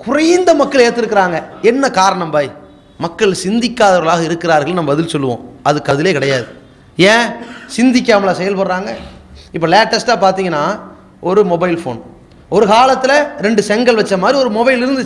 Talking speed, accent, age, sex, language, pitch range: 130 wpm, Indian, 30-49, male, English, 175-235 Hz